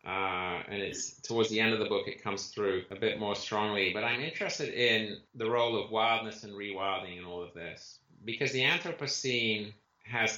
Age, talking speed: 30-49, 195 wpm